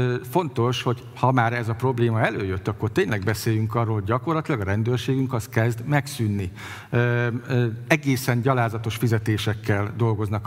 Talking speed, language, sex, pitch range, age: 130 wpm, Hungarian, male, 115-140 Hz, 50-69